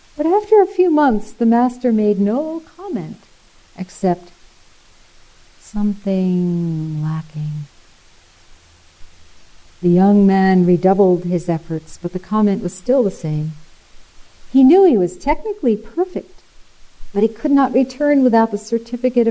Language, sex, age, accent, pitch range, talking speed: English, female, 50-69, American, 155-220 Hz, 125 wpm